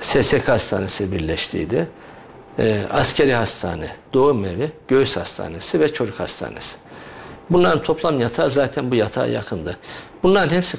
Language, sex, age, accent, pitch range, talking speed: Turkish, male, 50-69, native, 115-155 Hz, 120 wpm